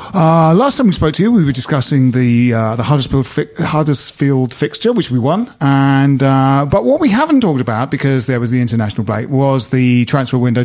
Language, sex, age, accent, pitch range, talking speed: English, male, 40-59, British, 120-150 Hz, 215 wpm